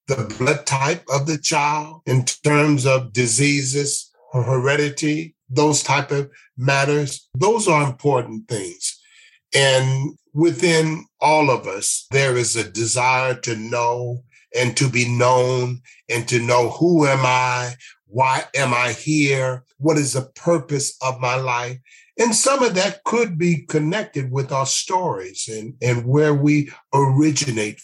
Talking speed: 140 wpm